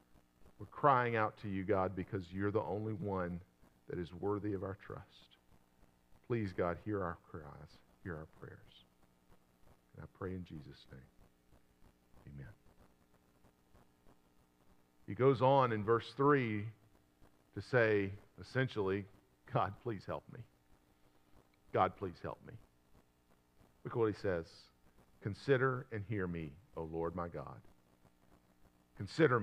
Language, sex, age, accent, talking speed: English, male, 50-69, American, 130 wpm